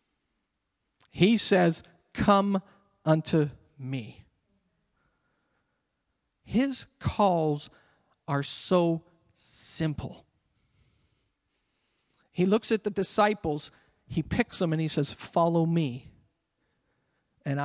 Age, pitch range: 40-59, 135-175 Hz